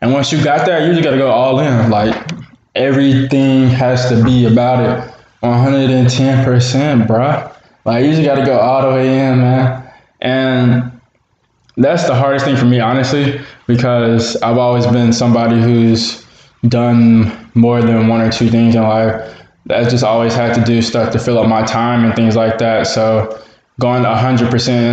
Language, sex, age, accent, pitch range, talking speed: English, male, 20-39, American, 115-125 Hz, 180 wpm